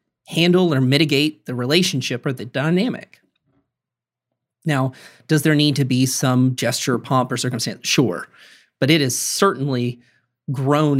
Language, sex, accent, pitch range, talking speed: English, male, American, 125-165 Hz, 135 wpm